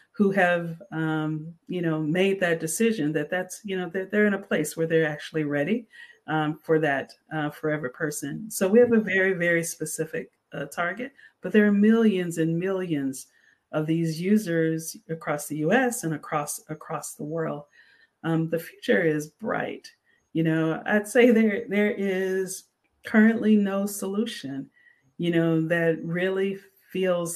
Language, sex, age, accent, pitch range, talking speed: English, female, 40-59, American, 160-200 Hz, 160 wpm